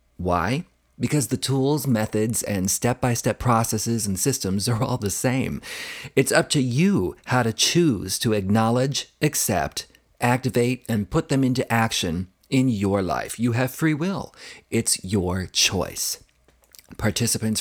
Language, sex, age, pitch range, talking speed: English, male, 40-59, 100-130 Hz, 140 wpm